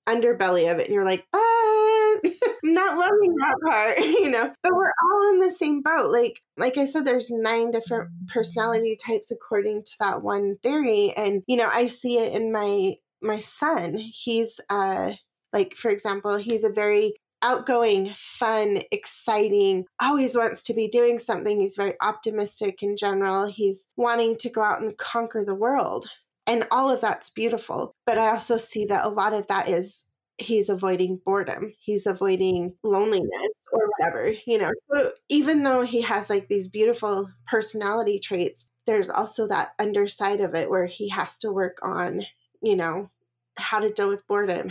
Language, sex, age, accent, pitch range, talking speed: English, female, 10-29, American, 200-250 Hz, 175 wpm